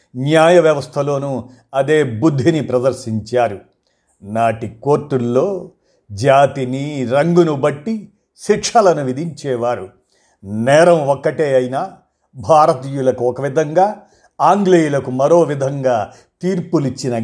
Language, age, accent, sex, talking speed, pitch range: Telugu, 50-69, native, male, 75 wpm, 120-165 Hz